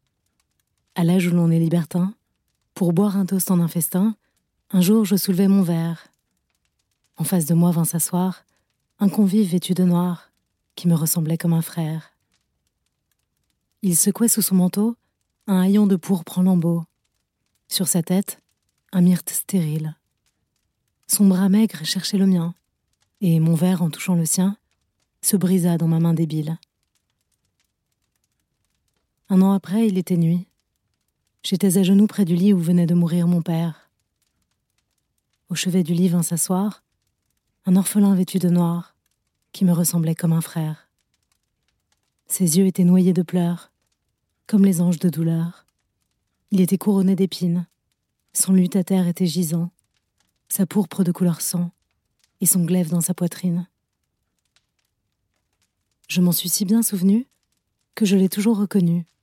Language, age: French, 30-49